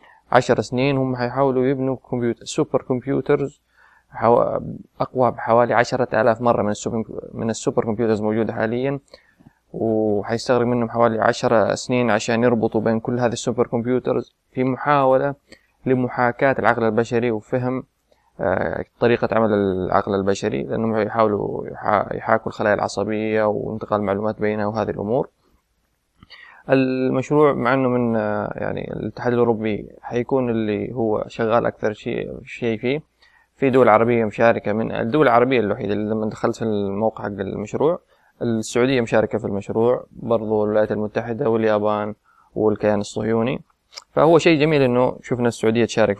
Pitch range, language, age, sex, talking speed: 105-125 Hz, Arabic, 20-39, male, 130 wpm